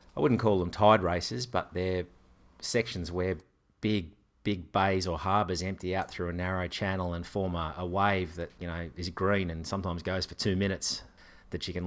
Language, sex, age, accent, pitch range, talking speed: English, male, 30-49, Australian, 85-105 Hz, 200 wpm